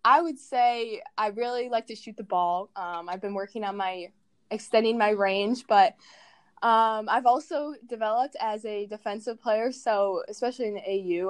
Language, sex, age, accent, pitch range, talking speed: English, female, 10-29, American, 185-225 Hz, 175 wpm